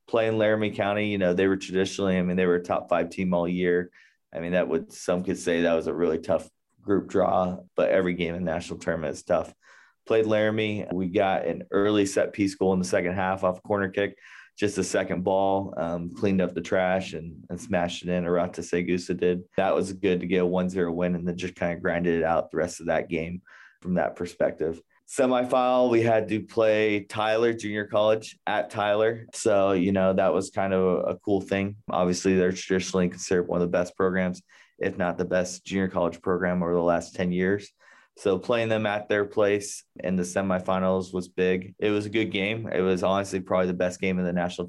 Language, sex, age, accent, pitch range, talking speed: English, male, 30-49, American, 90-100 Hz, 220 wpm